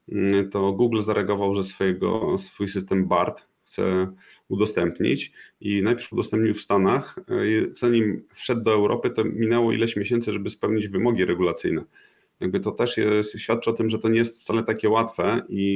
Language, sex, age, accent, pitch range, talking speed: Polish, male, 30-49, native, 95-110 Hz, 160 wpm